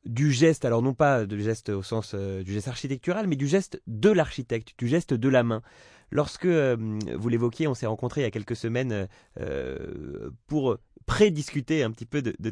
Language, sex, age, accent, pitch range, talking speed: French, male, 20-39, French, 115-155 Hz, 205 wpm